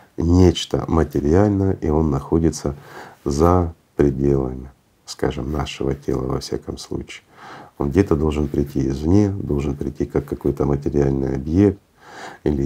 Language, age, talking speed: Russian, 50-69, 120 wpm